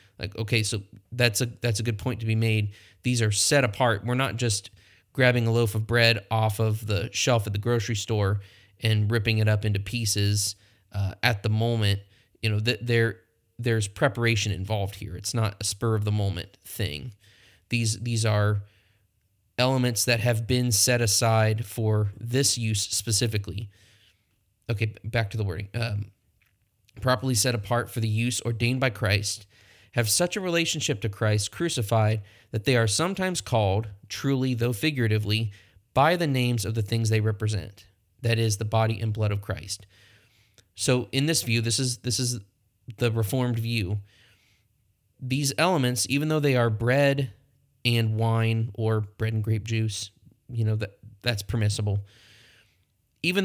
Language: English